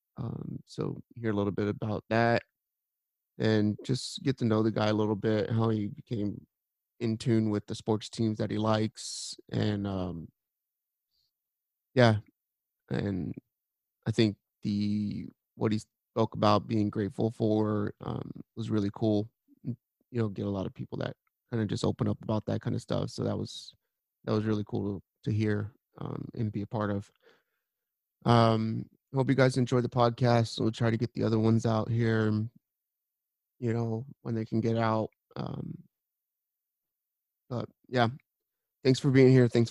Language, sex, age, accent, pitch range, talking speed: English, male, 30-49, American, 105-120 Hz, 170 wpm